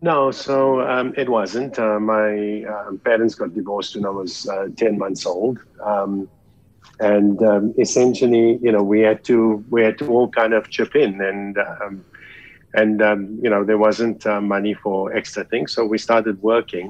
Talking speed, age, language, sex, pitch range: 185 wpm, 50-69, English, male, 100-115 Hz